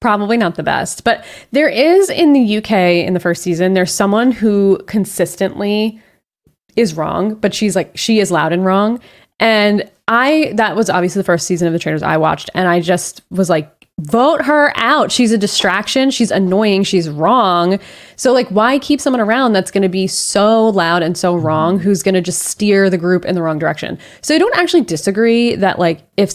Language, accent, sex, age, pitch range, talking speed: English, American, female, 20-39, 180-235 Hz, 205 wpm